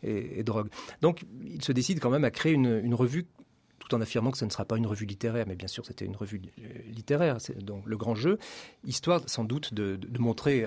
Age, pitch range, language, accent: 40-59, 105-130 Hz, French, French